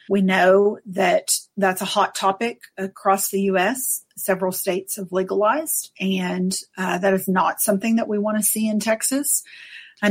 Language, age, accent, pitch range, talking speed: English, 40-59, American, 195-240 Hz, 165 wpm